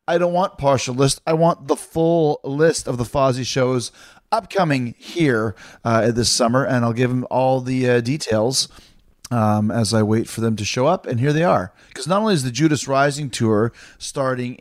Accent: American